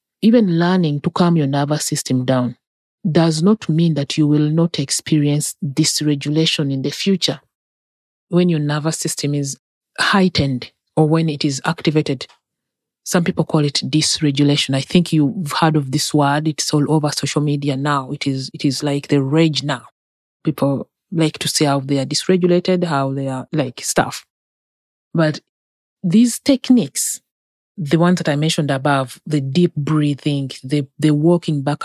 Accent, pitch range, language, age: Nigerian, 140-165 Hz, English, 30-49